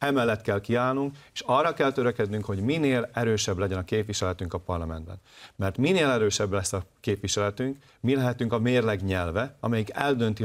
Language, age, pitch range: Hungarian, 40-59, 95-125 Hz